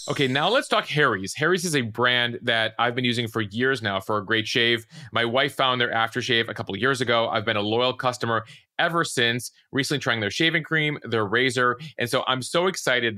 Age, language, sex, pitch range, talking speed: 30-49, English, male, 110-135 Hz, 225 wpm